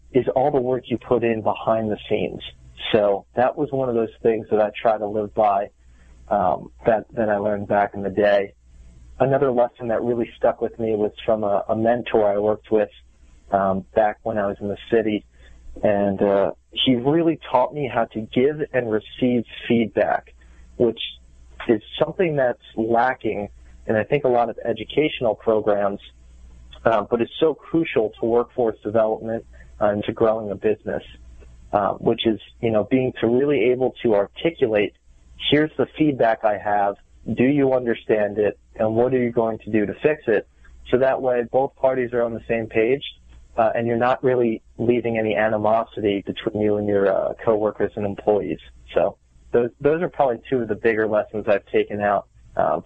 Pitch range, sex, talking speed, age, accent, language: 100-120 Hz, male, 185 wpm, 30-49, American, English